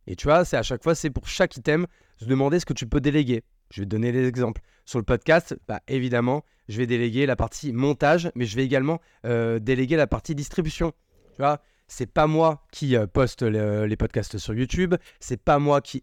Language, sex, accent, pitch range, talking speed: French, male, French, 115-150 Hz, 230 wpm